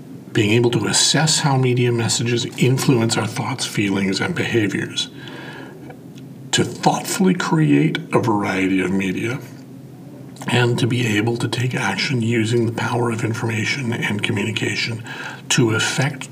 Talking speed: 130 wpm